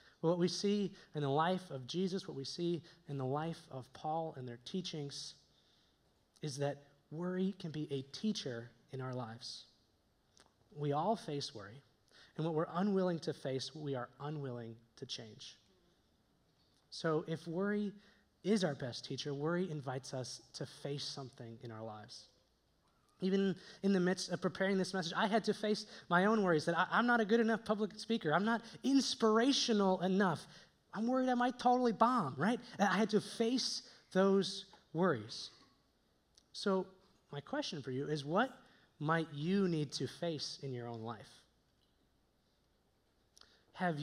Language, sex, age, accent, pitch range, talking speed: English, male, 20-39, American, 135-195 Hz, 160 wpm